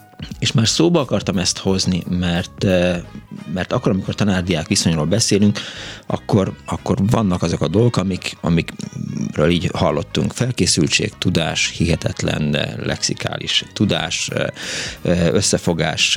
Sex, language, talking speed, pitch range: male, Hungarian, 110 wpm, 90-110 Hz